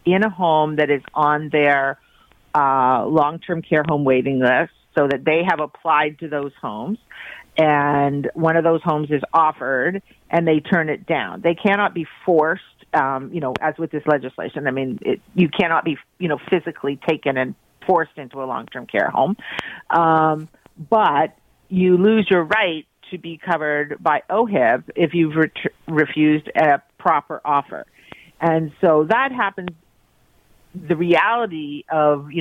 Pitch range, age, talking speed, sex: 145-170 Hz, 50-69, 155 wpm, female